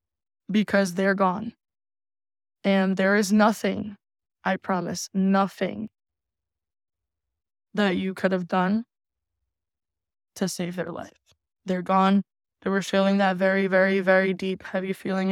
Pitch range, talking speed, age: 180-195 Hz, 120 wpm, 10-29